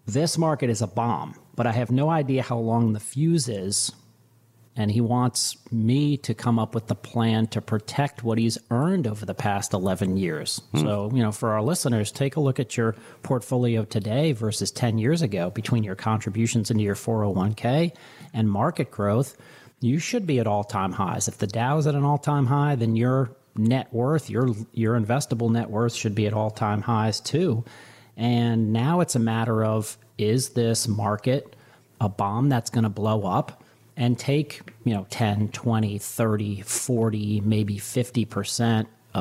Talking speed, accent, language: 185 wpm, American, English